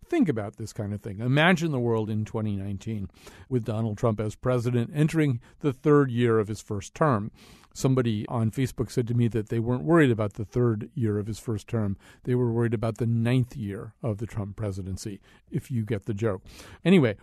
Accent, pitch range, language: American, 115-145 Hz, English